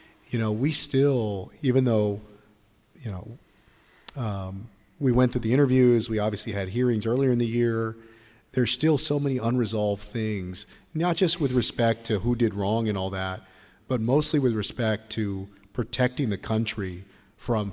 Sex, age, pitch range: male, 40-59, 105-130 Hz